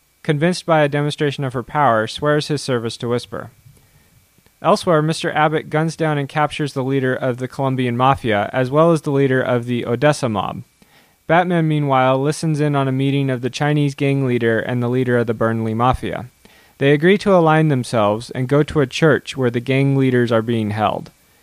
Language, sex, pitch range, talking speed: English, male, 120-150 Hz, 195 wpm